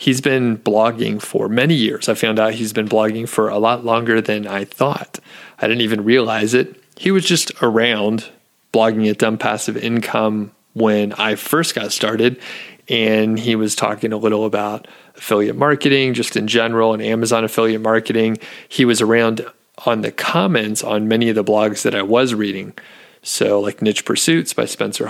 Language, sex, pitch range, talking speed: English, male, 110-130 Hz, 180 wpm